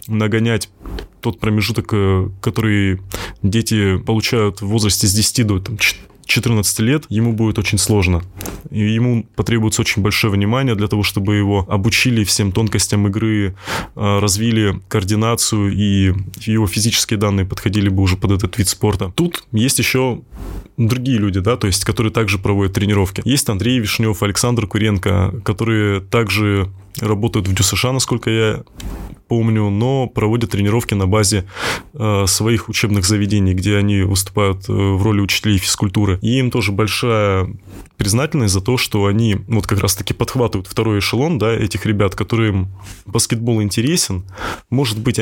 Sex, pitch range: male, 100-115 Hz